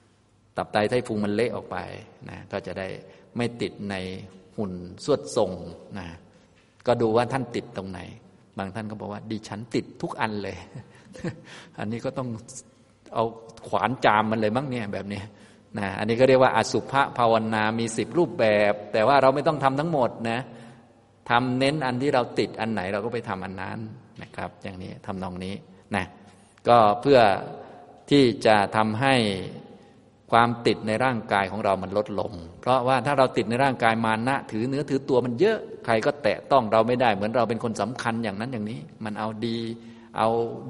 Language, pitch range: Thai, 105-125 Hz